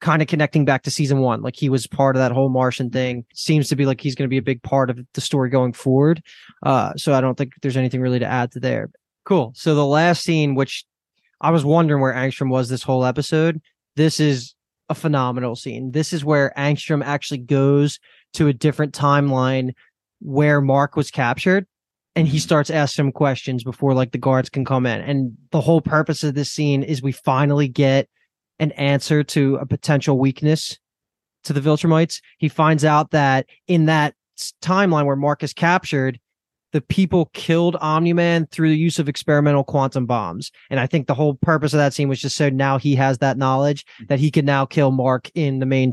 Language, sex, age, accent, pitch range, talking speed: English, male, 20-39, American, 130-155 Hz, 210 wpm